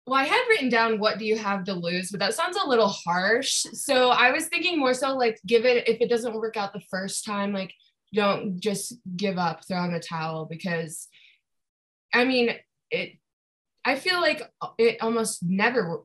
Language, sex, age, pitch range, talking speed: English, female, 20-39, 180-235 Hz, 200 wpm